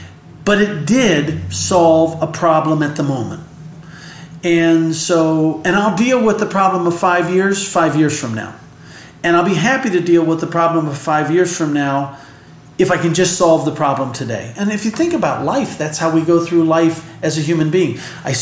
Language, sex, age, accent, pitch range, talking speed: English, male, 40-59, American, 155-190 Hz, 205 wpm